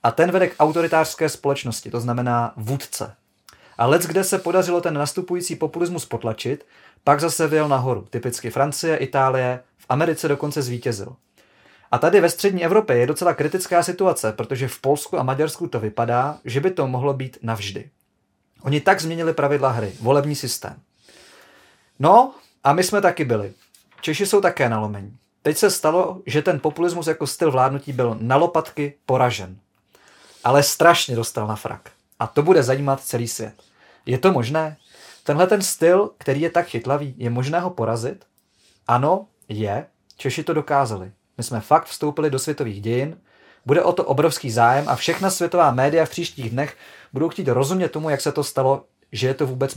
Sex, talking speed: male, 170 wpm